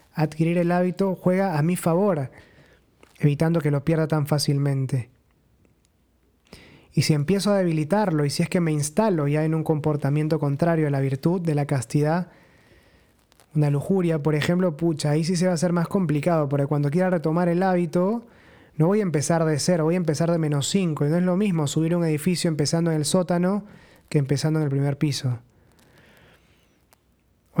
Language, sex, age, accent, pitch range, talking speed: Spanish, male, 20-39, Argentinian, 145-175 Hz, 185 wpm